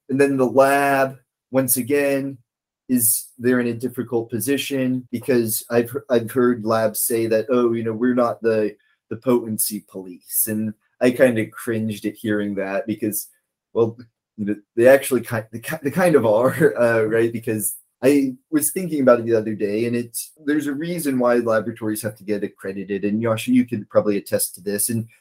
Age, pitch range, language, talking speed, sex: 30-49, 110-130 Hz, English, 185 wpm, male